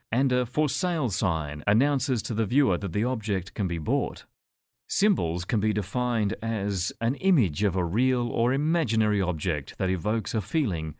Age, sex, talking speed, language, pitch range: 40-59, male, 170 wpm, English, 95-125 Hz